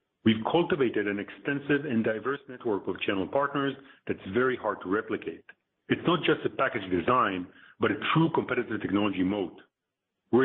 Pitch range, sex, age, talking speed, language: 115-145 Hz, male, 40-59, 160 wpm, English